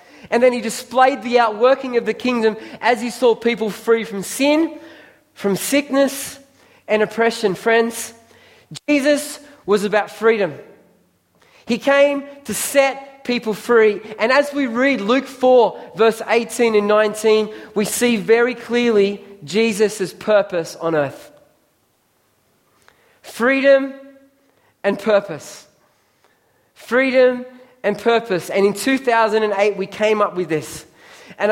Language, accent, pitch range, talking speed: English, Australian, 200-255 Hz, 125 wpm